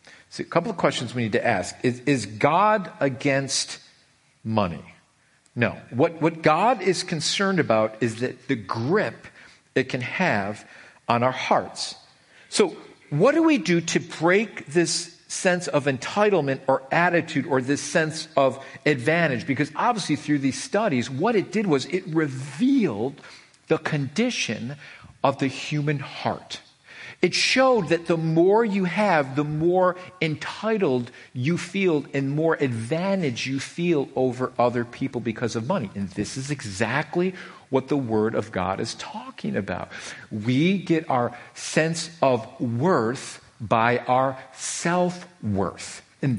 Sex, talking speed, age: male, 145 wpm, 50-69